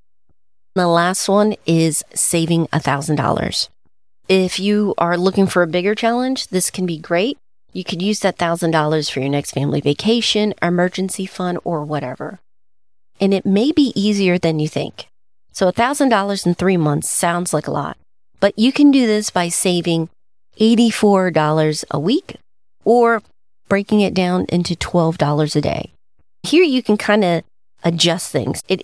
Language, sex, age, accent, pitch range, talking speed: English, female, 30-49, American, 150-195 Hz, 155 wpm